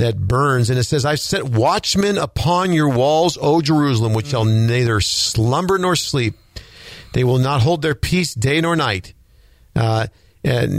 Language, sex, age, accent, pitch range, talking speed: English, male, 50-69, American, 105-135 Hz, 165 wpm